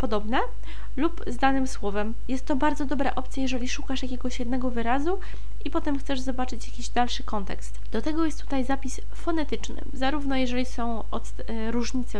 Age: 20-39